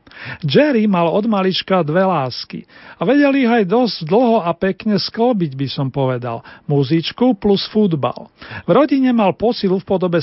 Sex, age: male, 40-59